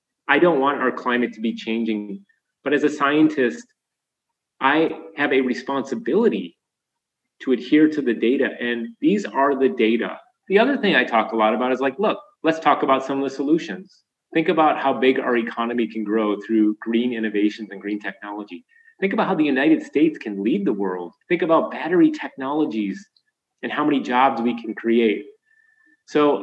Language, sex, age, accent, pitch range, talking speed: English, male, 30-49, American, 120-170 Hz, 180 wpm